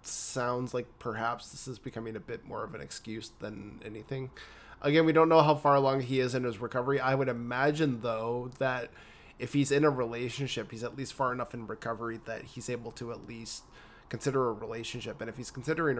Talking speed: 210 wpm